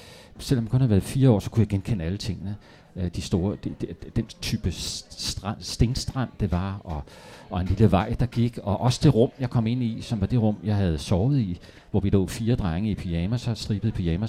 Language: Danish